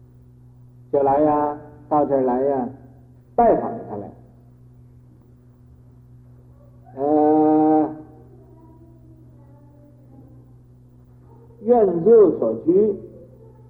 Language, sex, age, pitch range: Chinese, male, 60-79, 125-185 Hz